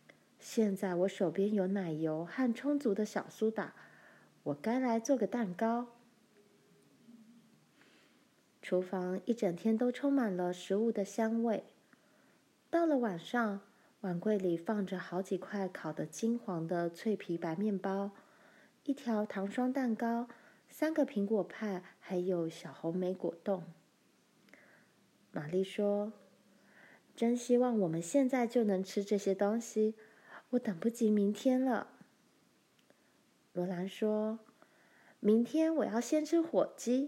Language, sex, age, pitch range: Chinese, female, 20-39, 185-235 Hz